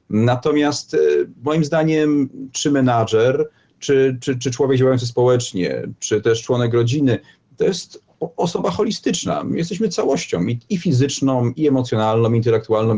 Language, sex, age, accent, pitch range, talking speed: Polish, male, 40-59, native, 120-150 Hz, 130 wpm